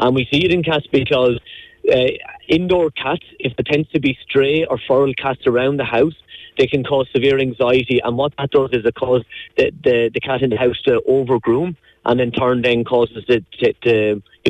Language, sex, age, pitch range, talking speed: English, male, 30-49, 120-140 Hz, 220 wpm